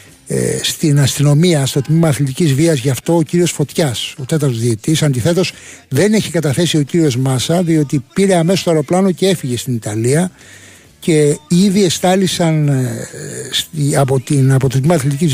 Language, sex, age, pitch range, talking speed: Greek, male, 60-79, 135-170 Hz, 155 wpm